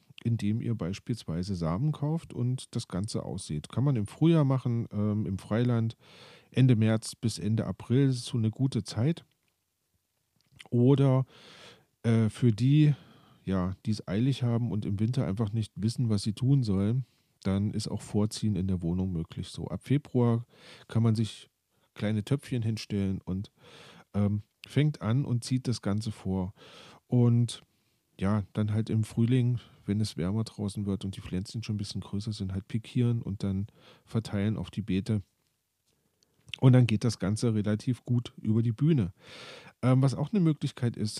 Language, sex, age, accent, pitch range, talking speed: German, male, 40-59, German, 100-125 Hz, 165 wpm